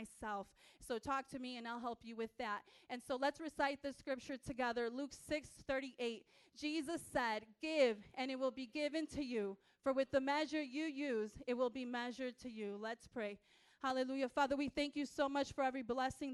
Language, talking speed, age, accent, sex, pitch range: English, 200 wpm, 30-49, American, female, 245-285 Hz